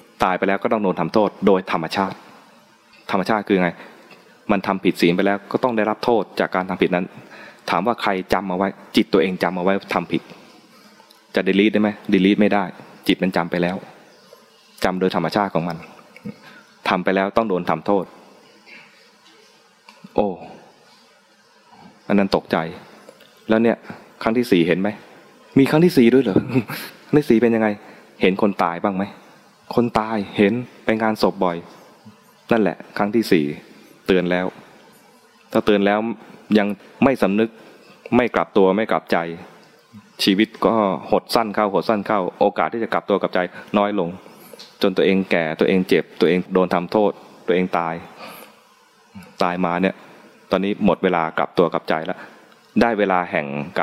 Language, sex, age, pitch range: English, male, 20-39, 90-105 Hz